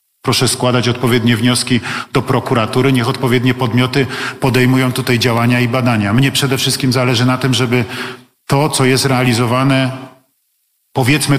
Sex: male